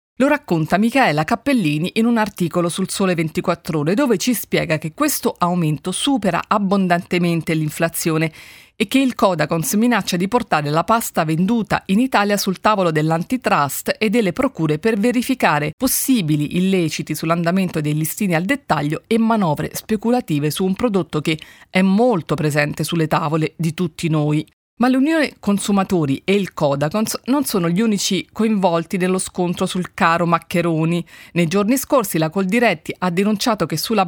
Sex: female